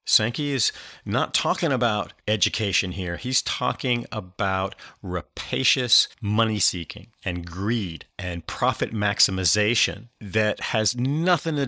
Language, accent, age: English, American, 40-59